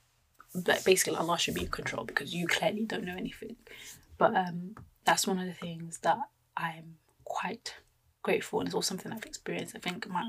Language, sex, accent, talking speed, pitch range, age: English, female, British, 185 wpm, 170-200 Hz, 20-39